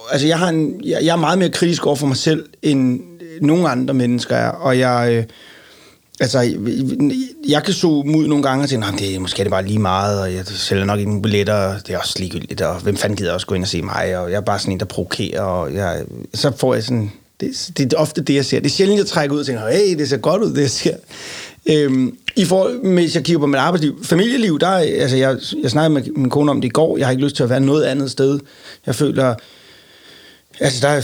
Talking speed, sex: 260 wpm, male